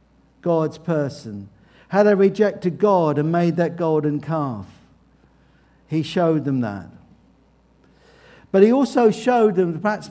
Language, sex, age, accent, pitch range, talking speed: English, male, 50-69, British, 135-185 Hz, 125 wpm